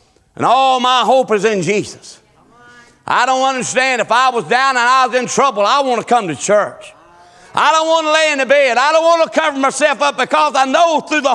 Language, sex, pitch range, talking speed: English, male, 190-280 Hz, 240 wpm